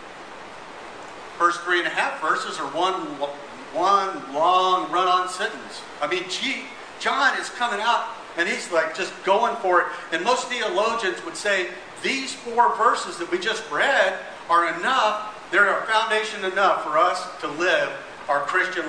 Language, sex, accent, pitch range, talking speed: English, male, American, 170-215 Hz, 160 wpm